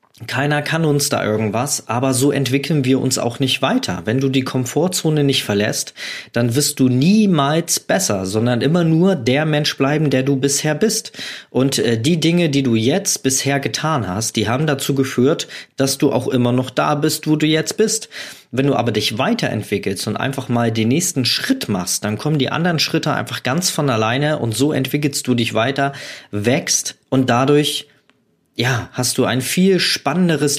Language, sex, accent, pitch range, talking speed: German, male, German, 115-150 Hz, 185 wpm